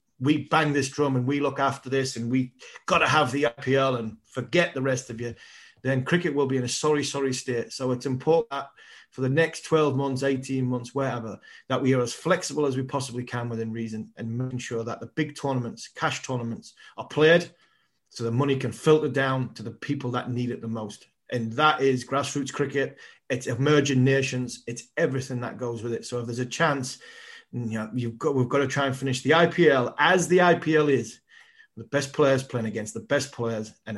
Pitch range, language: 120-145 Hz, English